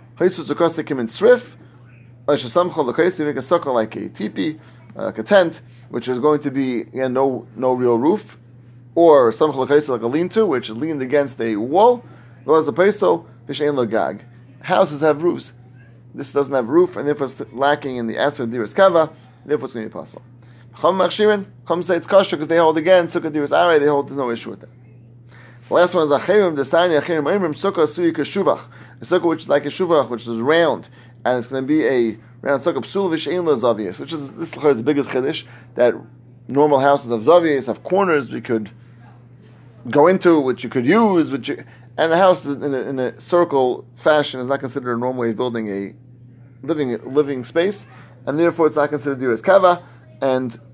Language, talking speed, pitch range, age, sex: English, 200 wpm, 120-155 Hz, 30-49, male